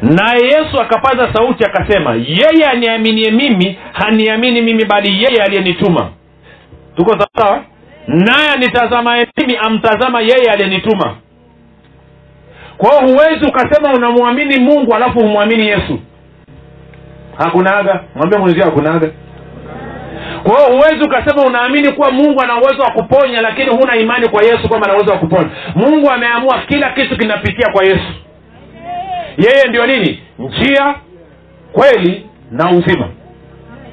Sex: male